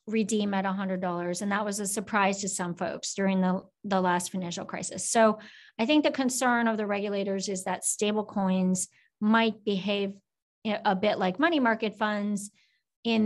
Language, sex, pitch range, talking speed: English, female, 195-220 Hz, 170 wpm